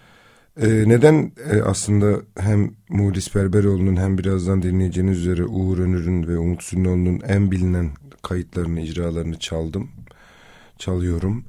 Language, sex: Turkish, male